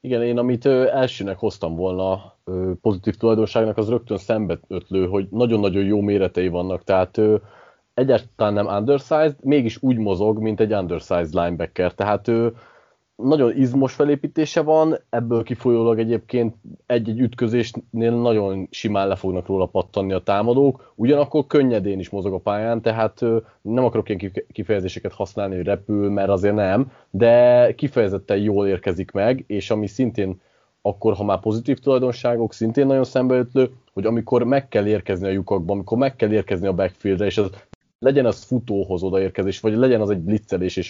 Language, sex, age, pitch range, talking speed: Hungarian, male, 30-49, 100-120 Hz, 155 wpm